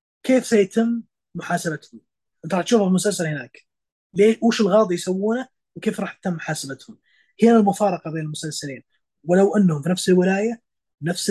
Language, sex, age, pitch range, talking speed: Arabic, male, 20-39, 155-210 Hz, 145 wpm